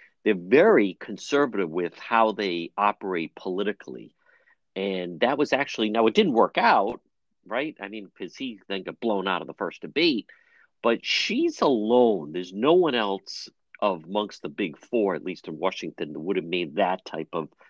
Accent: American